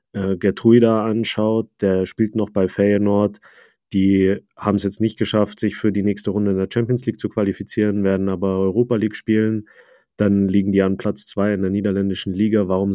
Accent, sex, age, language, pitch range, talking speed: German, male, 30-49, German, 95-105 Hz, 185 wpm